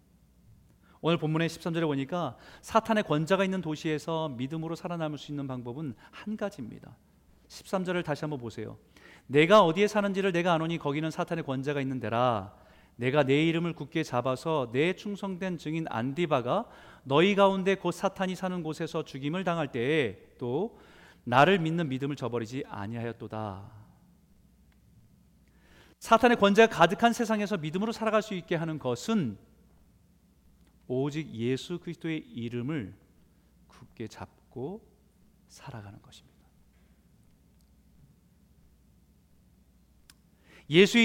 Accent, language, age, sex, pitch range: native, Korean, 40-59, male, 125-195 Hz